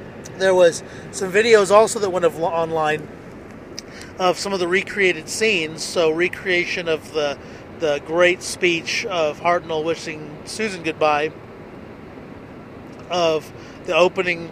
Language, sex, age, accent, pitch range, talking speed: English, male, 40-59, American, 160-190 Hz, 125 wpm